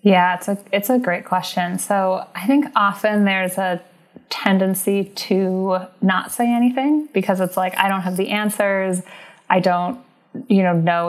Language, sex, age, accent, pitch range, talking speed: English, female, 20-39, American, 175-215 Hz, 170 wpm